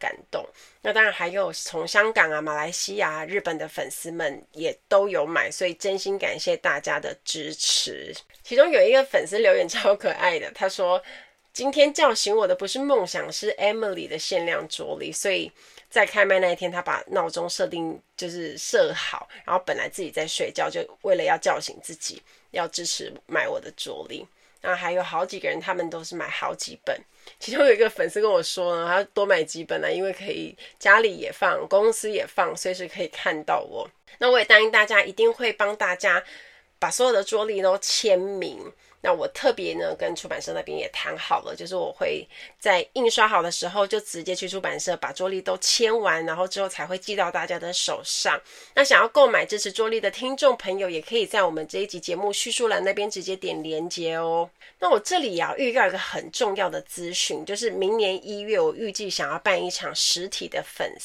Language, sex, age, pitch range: Chinese, female, 20-39, 180-285 Hz